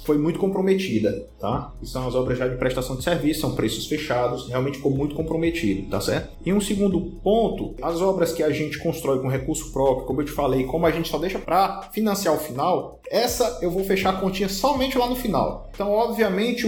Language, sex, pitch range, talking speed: Portuguese, male, 145-195 Hz, 210 wpm